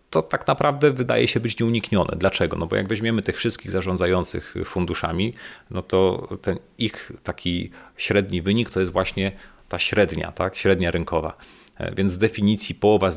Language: Polish